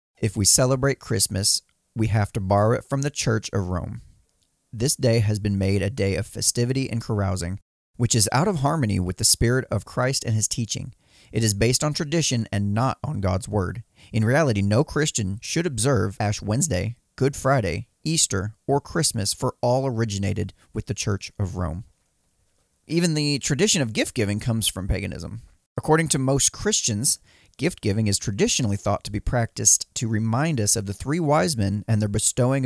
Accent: American